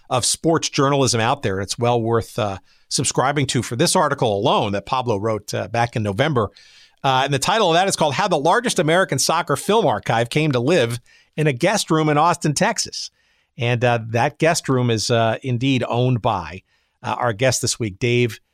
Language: English